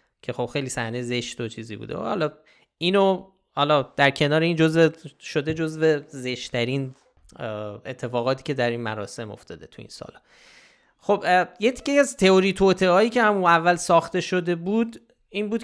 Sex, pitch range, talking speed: male, 130-165 Hz, 160 wpm